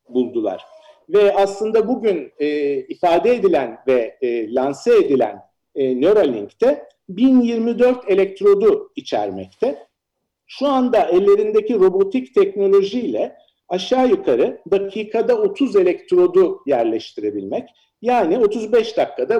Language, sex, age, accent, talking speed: Turkish, male, 50-69, native, 95 wpm